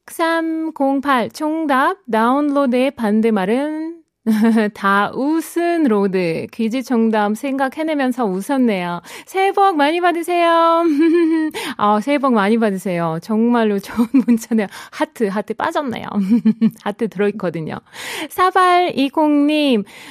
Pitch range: 210-300 Hz